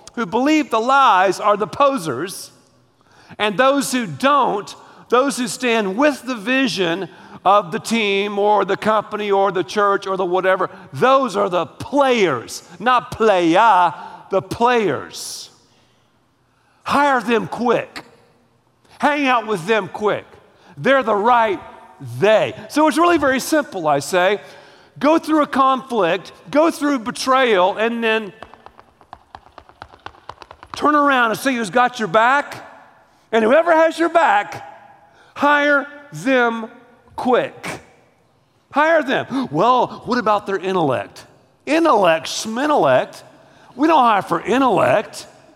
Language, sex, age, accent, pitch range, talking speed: English, male, 50-69, American, 200-275 Hz, 125 wpm